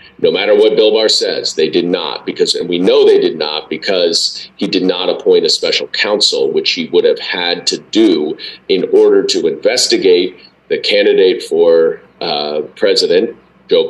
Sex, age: male, 40-59